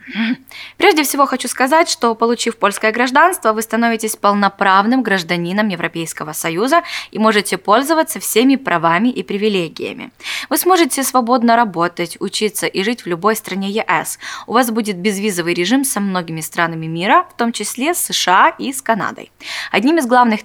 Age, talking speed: 20-39, 155 wpm